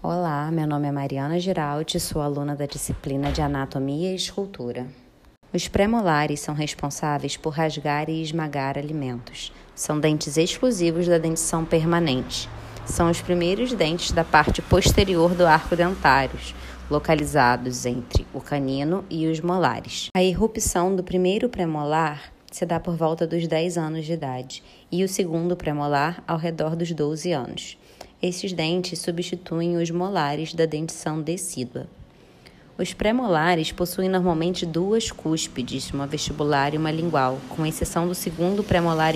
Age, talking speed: 20-39, 140 wpm